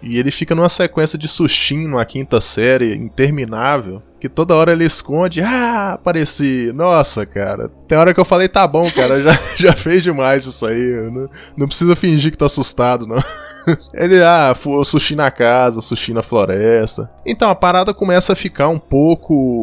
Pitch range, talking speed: 115-160 Hz, 175 wpm